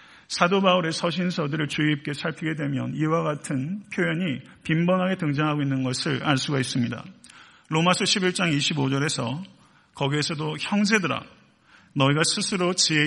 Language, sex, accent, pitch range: Korean, male, native, 135-175 Hz